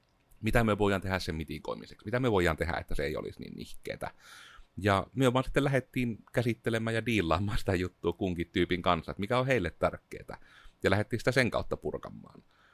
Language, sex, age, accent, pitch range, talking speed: Finnish, male, 30-49, native, 85-115 Hz, 190 wpm